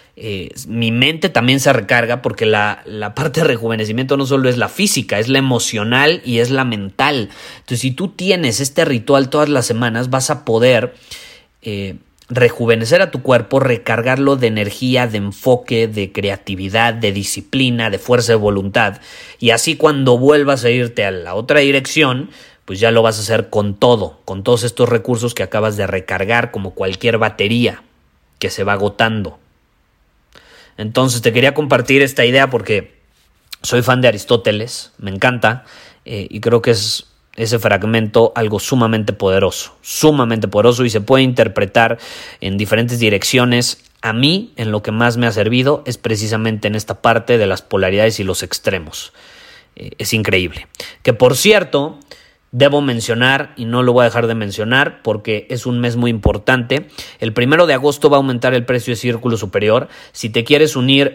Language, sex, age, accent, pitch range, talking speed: Spanish, male, 30-49, Mexican, 110-130 Hz, 175 wpm